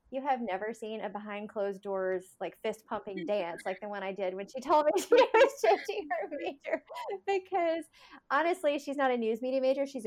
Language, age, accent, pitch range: English, 20-39, American, 195-255 Hz